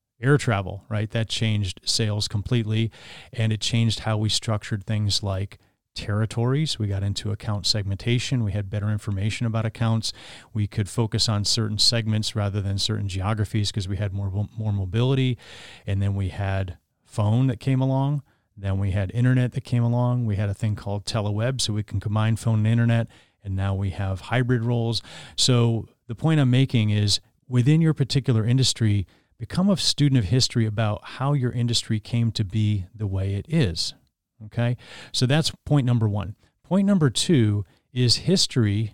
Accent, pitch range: American, 105-130 Hz